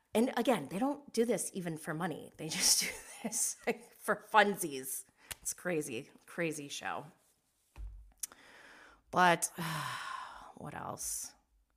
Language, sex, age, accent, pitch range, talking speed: English, female, 30-49, American, 165-220 Hz, 120 wpm